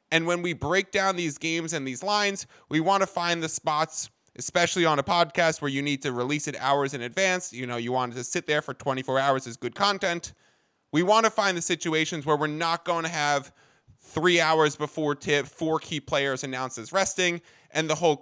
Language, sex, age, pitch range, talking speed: English, male, 20-39, 145-180 Hz, 220 wpm